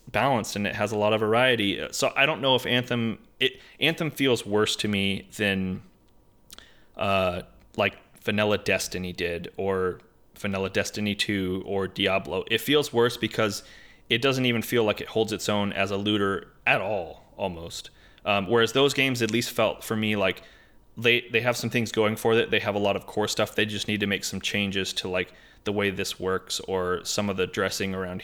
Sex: male